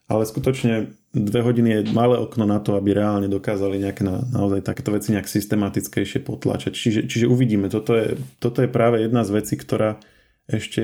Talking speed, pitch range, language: 185 wpm, 105-115 Hz, Slovak